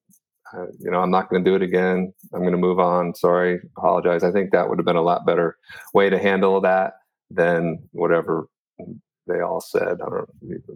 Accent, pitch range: American, 90-105 Hz